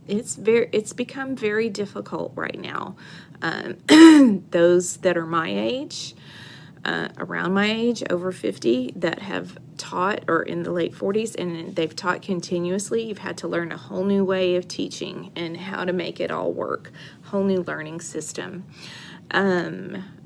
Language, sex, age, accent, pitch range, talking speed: English, female, 40-59, American, 170-205 Hz, 160 wpm